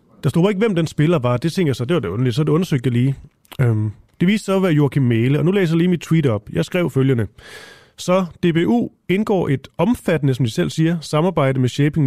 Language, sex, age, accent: Danish, male, 30-49, native